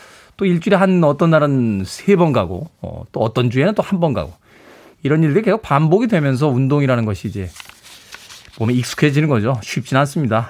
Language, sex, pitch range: Korean, male, 130-185 Hz